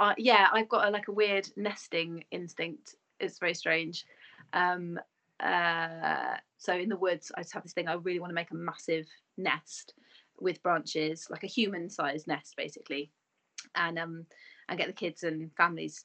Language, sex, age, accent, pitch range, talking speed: English, female, 30-49, British, 165-235 Hz, 170 wpm